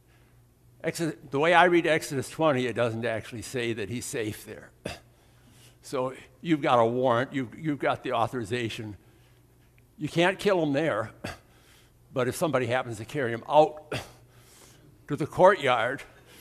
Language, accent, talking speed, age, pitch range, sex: English, American, 145 wpm, 60-79, 120-145 Hz, male